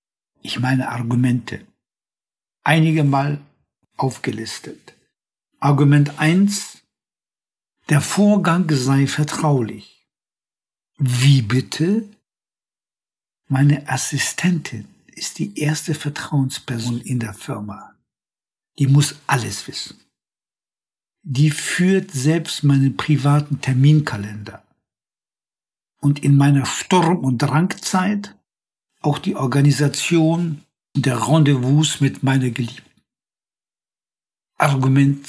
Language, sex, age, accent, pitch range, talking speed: German, male, 60-79, German, 135-170 Hz, 80 wpm